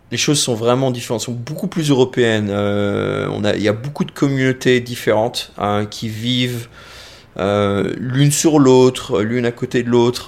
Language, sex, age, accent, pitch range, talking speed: French, male, 20-39, French, 110-130 Hz, 180 wpm